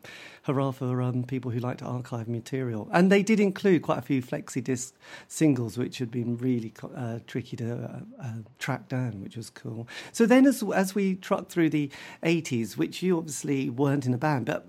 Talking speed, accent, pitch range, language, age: 200 wpm, British, 120-150 Hz, English, 50-69